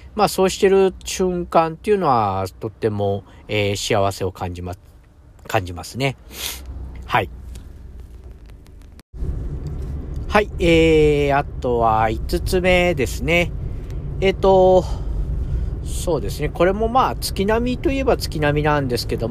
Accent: native